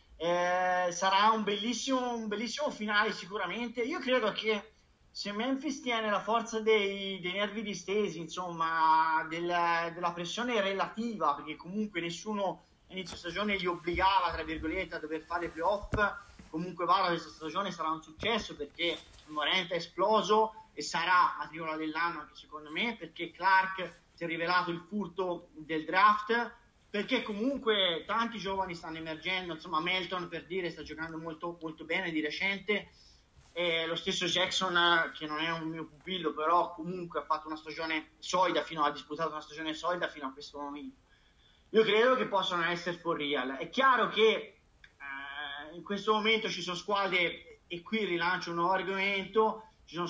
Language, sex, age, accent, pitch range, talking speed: Italian, male, 30-49, native, 165-205 Hz, 165 wpm